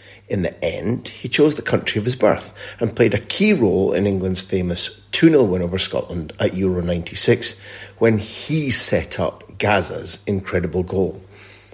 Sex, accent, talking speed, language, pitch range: male, British, 165 wpm, English, 95-110 Hz